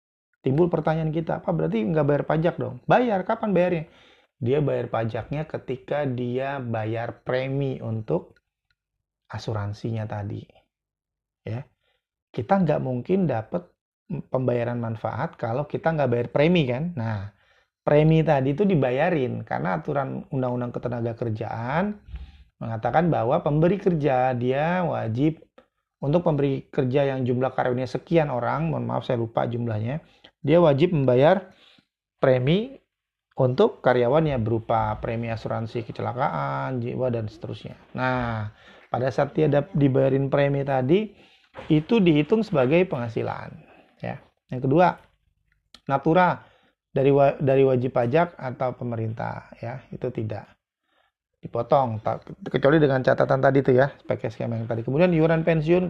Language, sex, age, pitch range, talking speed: Indonesian, male, 30-49, 120-155 Hz, 120 wpm